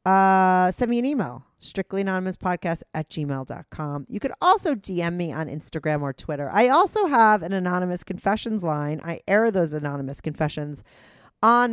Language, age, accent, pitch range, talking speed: English, 40-59, American, 150-200 Hz, 155 wpm